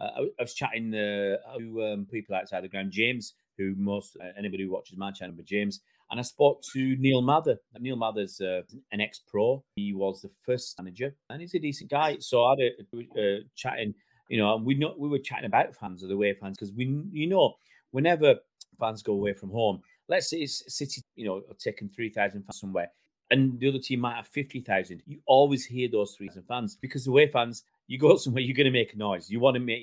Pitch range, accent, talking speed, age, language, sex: 100-130 Hz, British, 230 wpm, 30-49, English, male